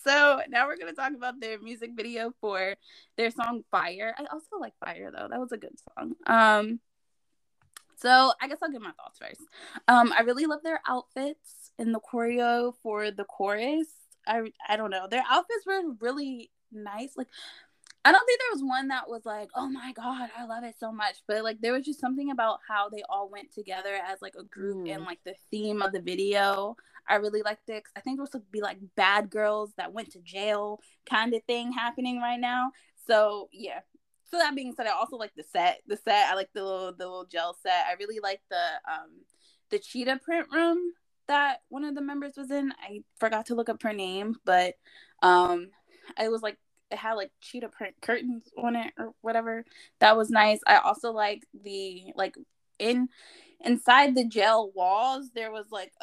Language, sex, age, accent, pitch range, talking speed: English, female, 20-39, American, 210-270 Hz, 205 wpm